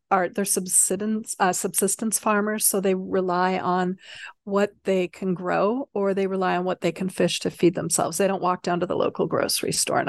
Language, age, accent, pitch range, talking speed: English, 30-49, American, 180-205 Hz, 210 wpm